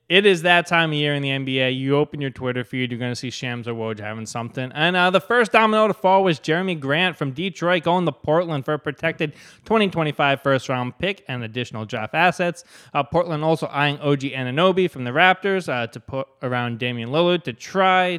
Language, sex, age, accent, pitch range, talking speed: English, male, 20-39, American, 130-175 Hz, 220 wpm